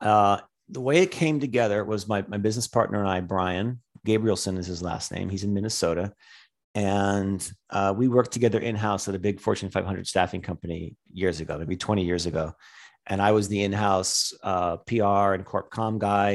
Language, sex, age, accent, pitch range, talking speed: English, male, 40-59, American, 95-115 Hz, 190 wpm